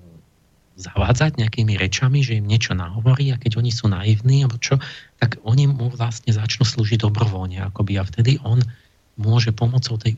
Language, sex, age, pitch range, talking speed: Slovak, male, 40-59, 100-120 Hz, 165 wpm